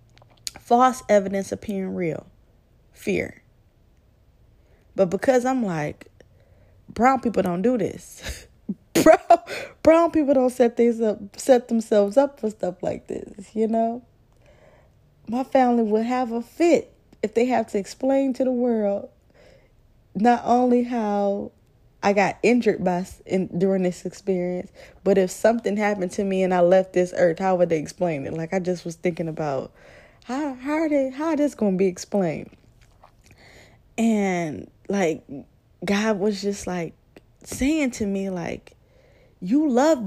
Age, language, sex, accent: 20-39, English, female, American